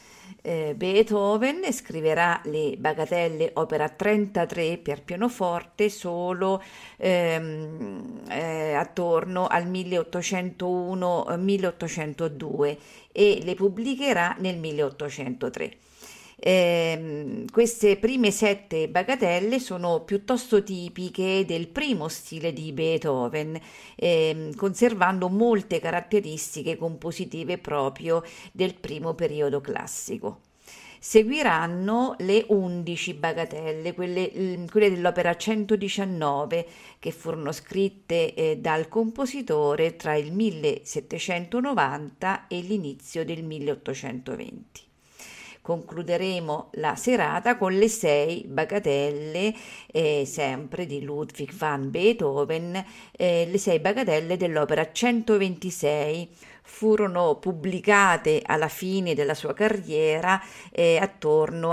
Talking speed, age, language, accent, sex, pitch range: 90 wpm, 50-69, Italian, native, female, 160-200 Hz